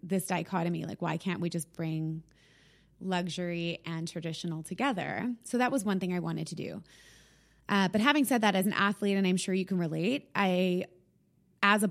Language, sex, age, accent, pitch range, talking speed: English, female, 20-39, American, 175-200 Hz, 190 wpm